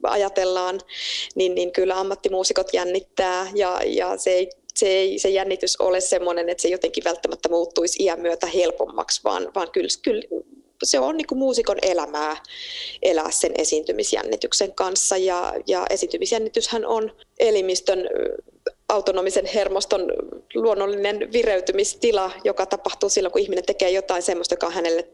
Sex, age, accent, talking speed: female, 20-39, native, 135 wpm